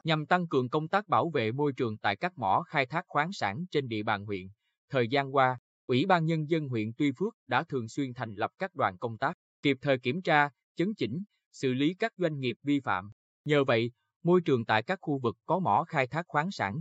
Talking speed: 235 wpm